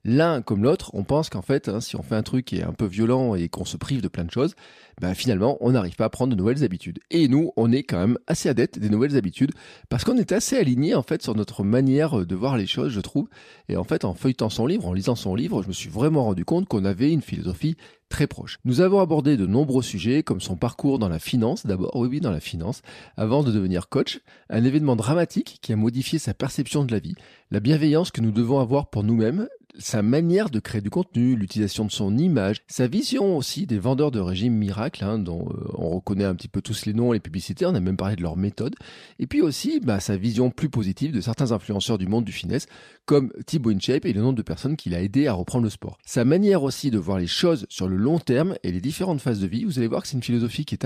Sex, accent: male, French